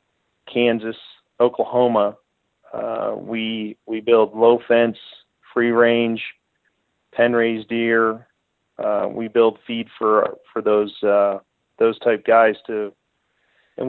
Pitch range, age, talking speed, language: 105-115 Hz, 40-59, 110 wpm, English